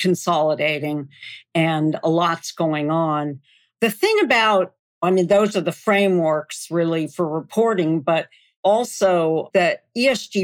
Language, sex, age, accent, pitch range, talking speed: English, female, 50-69, American, 175-215 Hz, 125 wpm